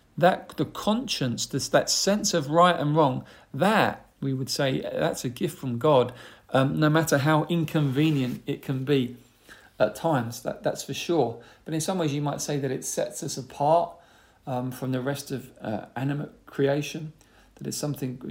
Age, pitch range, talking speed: 40-59, 130-165 Hz, 175 wpm